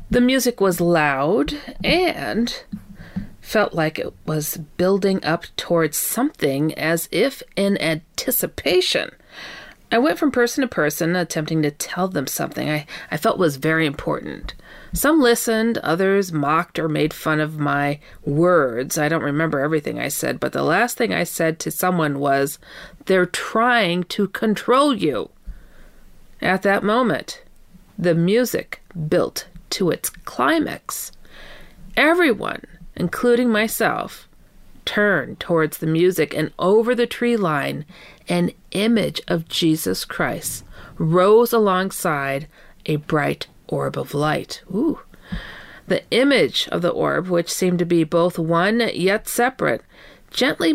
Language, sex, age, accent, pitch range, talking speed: English, female, 40-59, American, 160-225 Hz, 130 wpm